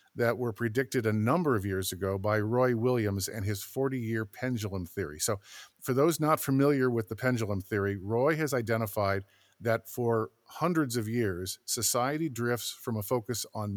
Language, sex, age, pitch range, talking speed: English, male, 50-69, 110-135 Hz, 170 wpm